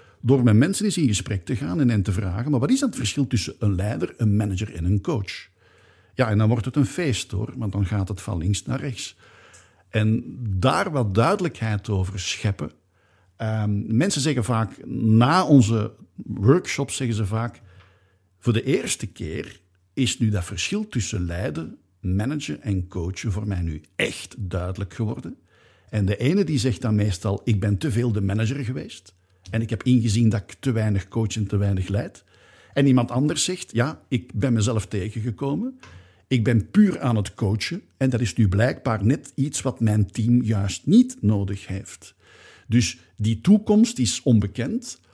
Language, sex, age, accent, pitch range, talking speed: English, male, 50-69, Dutch, 100-130 Hz, 180 wpm